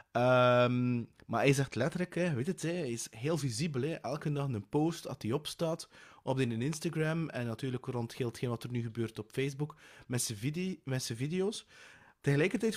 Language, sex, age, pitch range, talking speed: English, male, 30-49, 115-160 Hz, 200 wpm